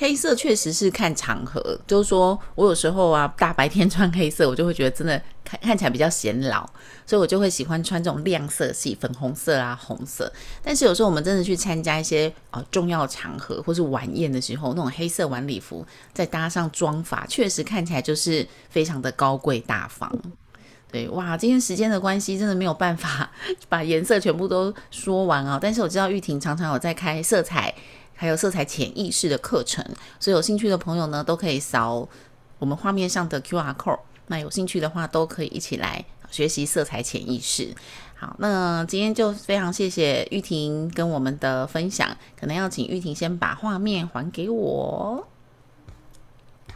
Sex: female